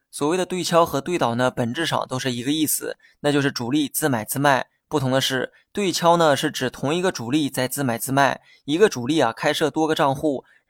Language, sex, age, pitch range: Chinese, male, 20-39, 130-155 Hz